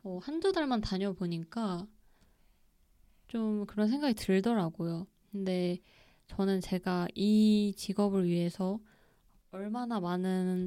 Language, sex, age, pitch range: Korean, female, 20-39, 180-215 Hz